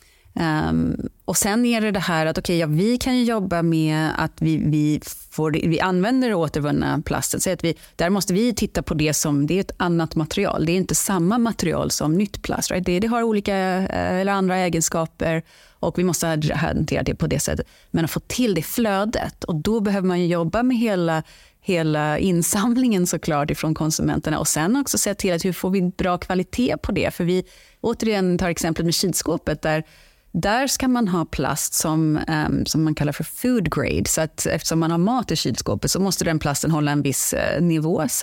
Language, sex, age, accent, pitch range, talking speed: Swedish, female, 30-49, native, 160-205 Hz, 210 wpm